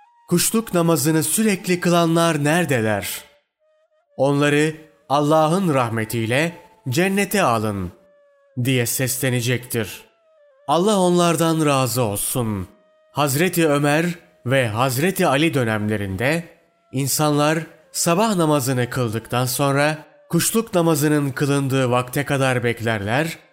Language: Turkish